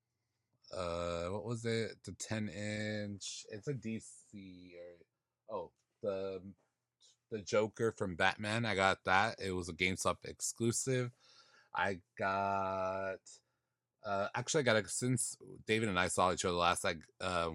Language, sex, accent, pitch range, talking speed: English, male, American, 90-115 Hz, 140 wpm